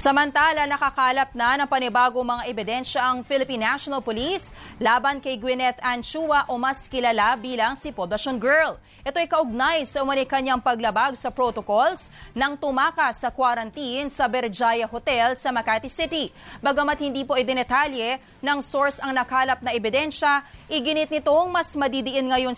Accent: Filipino